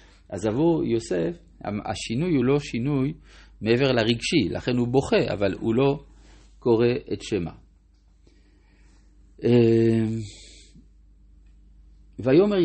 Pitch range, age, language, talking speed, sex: 100-145 Hz, 50-69, Hebrew, 90 wpm, male